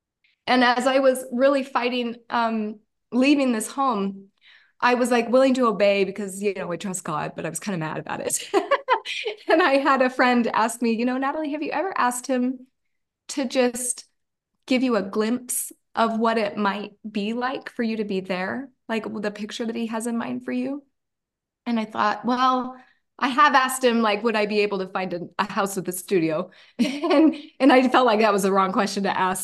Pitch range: 195-250 Hz